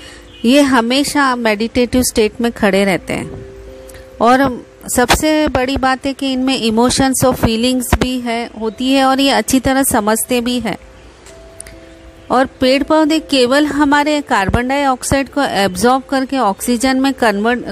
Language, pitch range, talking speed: Hindi, 225-260 Hz, 140 wpm